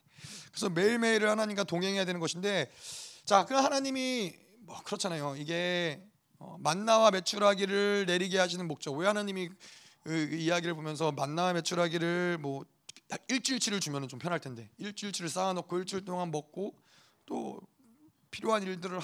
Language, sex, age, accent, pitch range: Korean, male, 30-49, native, 160-215 Hz